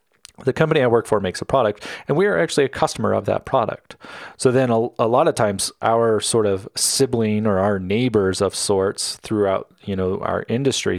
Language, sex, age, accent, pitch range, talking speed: English, male, 40-59, American, 105-130 Hz, 210 wpm